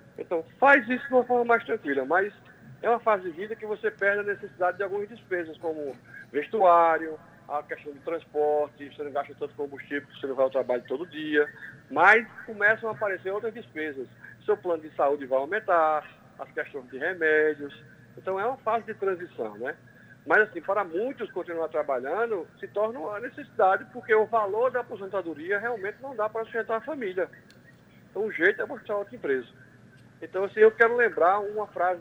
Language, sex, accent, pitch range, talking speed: Portuguese, male, Brazilian, 150-230 Hz, 185 wpm